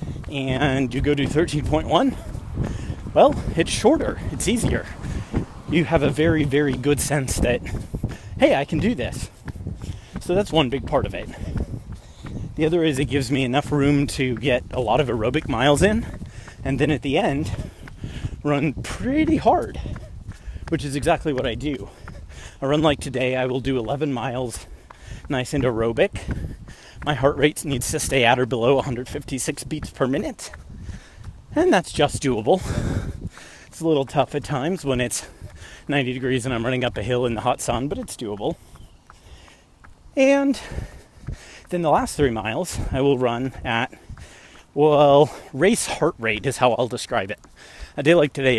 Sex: male